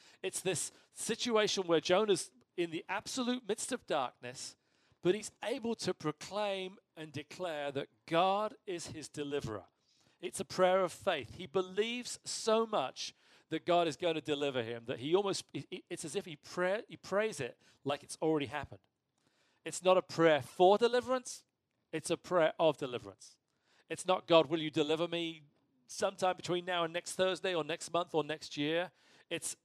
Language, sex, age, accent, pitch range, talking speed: English, male, 40-59, British, 140-185 Hz, 170 wpm